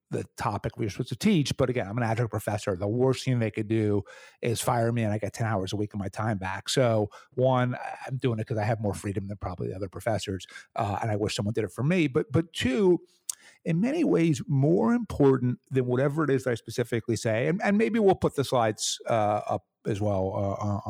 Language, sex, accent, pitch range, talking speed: English, male, American, 105-135 Hz, 245 wpm